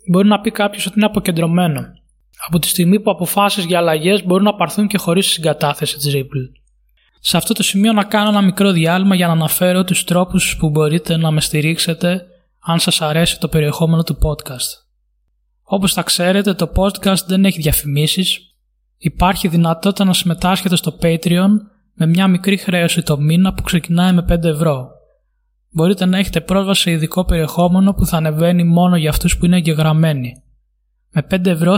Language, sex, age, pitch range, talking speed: Greek, male, 20-39, 160-190 Hz, 175 wpm